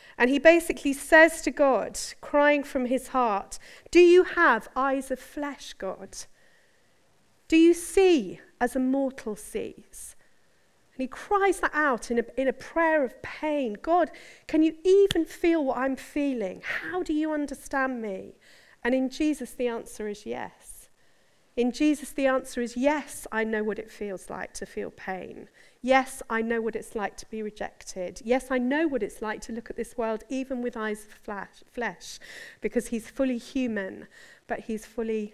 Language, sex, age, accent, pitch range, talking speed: English, female, 40-59, British, 225-290 Hz, 175 wpm